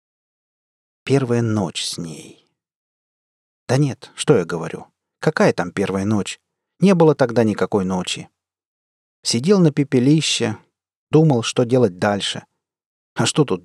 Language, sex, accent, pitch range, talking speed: Russian, male, native, 110-155 Hz, 125 wpm